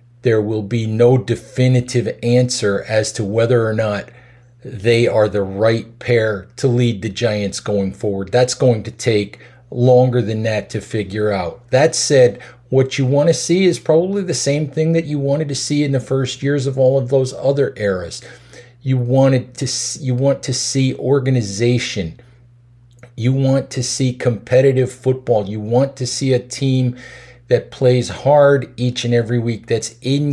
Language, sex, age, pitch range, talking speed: Slovak, male, 50-69, 115-130 Hz, 175 wpm